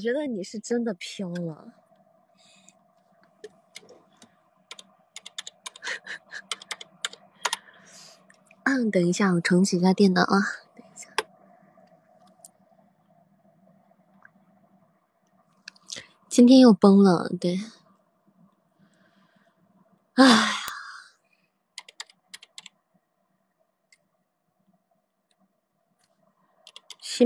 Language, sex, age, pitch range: Chinese, female, 20-39, 180-225 Hz